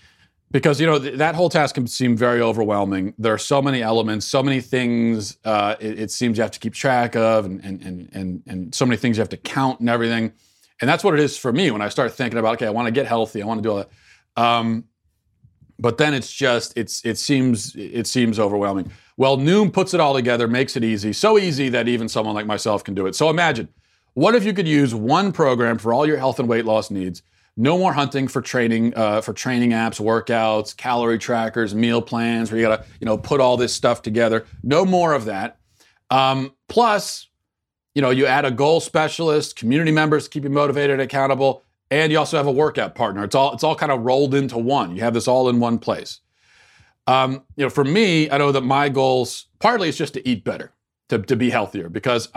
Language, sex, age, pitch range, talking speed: English, male, 30-49, 110-140 Hz, 230 wpm